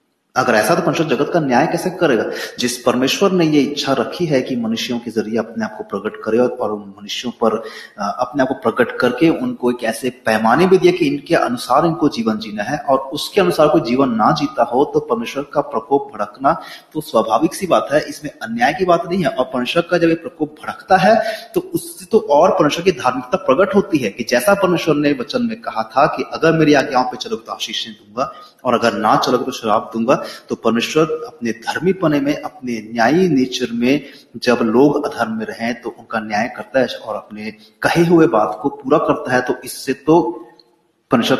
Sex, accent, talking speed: male, native, 210 wpm